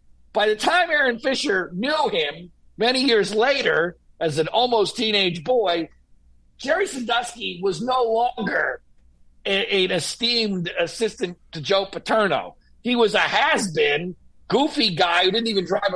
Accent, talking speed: American, 135 wpm